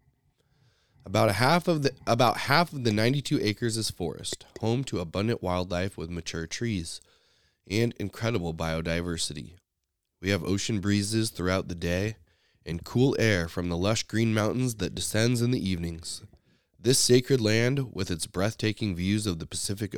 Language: English